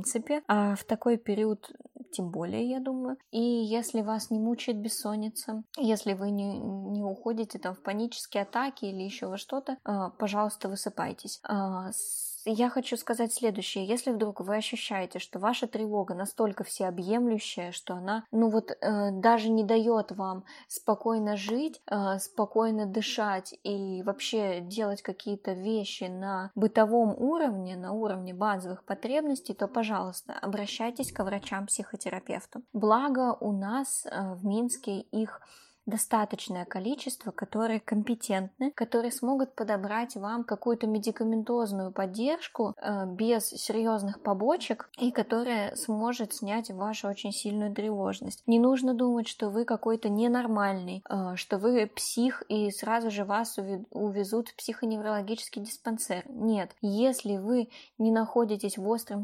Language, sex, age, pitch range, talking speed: Russian, female, 20-39, 200-230 Hz, 135 wpm